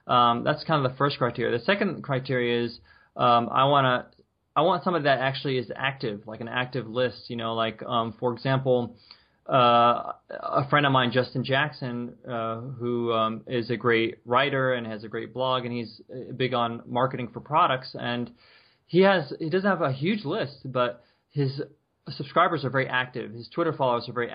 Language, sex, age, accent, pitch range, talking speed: English, male, 20-39, American, 120-140 Hz, 195 wpm